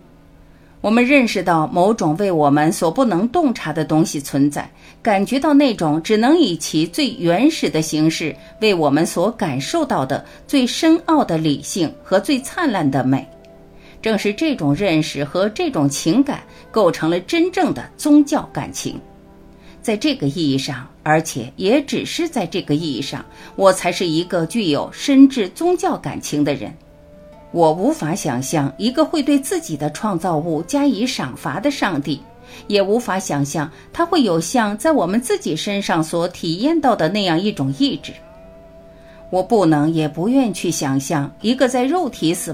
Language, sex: Chinese, female